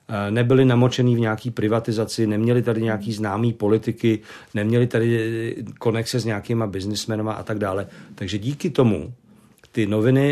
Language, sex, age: Czech, male, 50-69